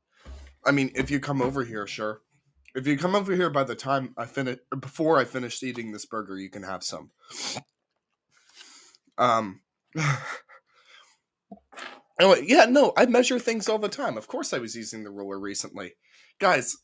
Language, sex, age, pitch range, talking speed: English, male, 20-39, 130-200 Hz, 170 wpm